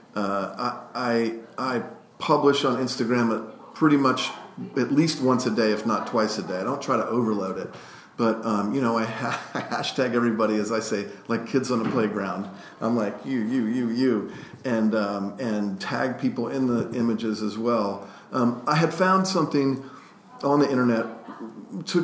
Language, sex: English, male